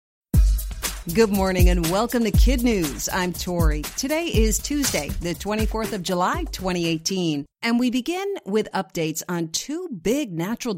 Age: 50-69